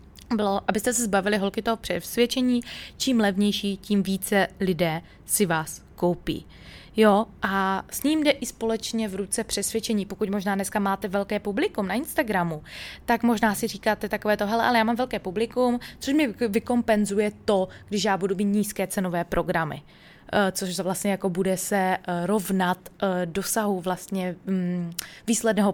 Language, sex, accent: Czech, female, native